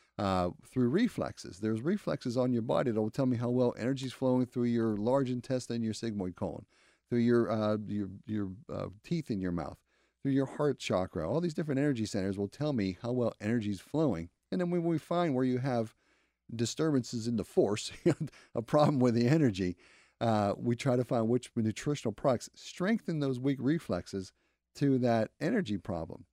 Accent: American